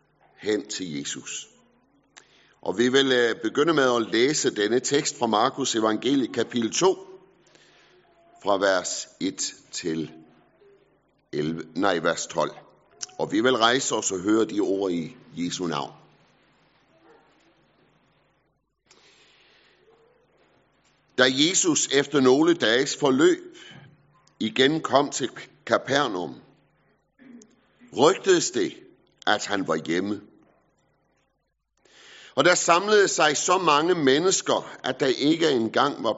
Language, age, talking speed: Danish, 50-69, 110 wpm